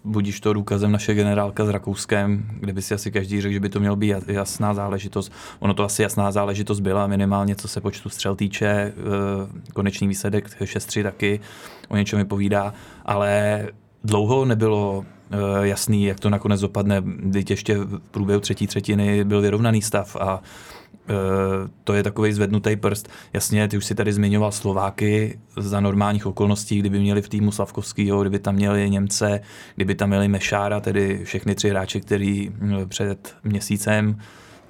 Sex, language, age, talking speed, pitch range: male, Czech, 20-39, 160 wpm, 100-105 Hz